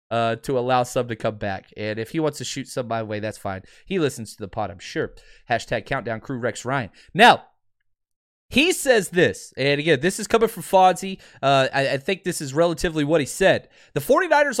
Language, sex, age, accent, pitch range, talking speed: English, male, 20-39, American, 135-205 Hz, 220 wpm